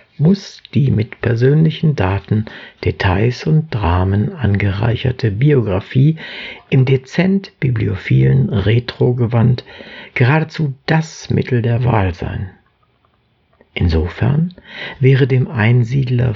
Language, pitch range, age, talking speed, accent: German, 105-135 Hz, 60-79, 85 wpm, German